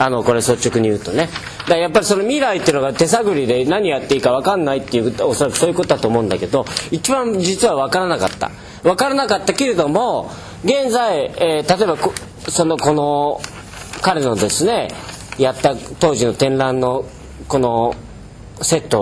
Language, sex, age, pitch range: Japanese, male, 40-59, 120-205 Hz